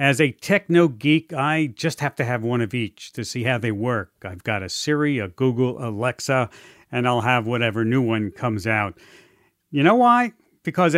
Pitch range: 135-185 Hz